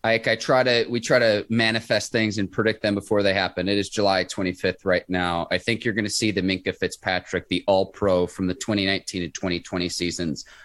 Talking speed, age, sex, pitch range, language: 215 wpm, 30-49, male, 90-110 Hz, English